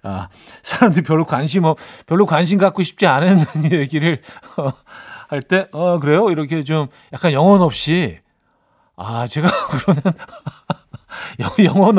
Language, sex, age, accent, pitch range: Korean, male, 40-59, native, 130-190 Hz